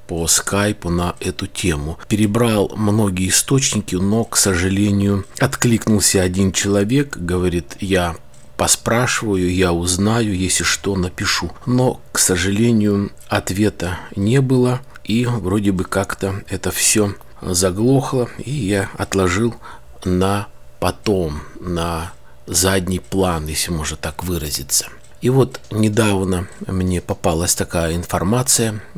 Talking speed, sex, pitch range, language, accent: 110 wpm, male, 90-110 Hz, Russian, native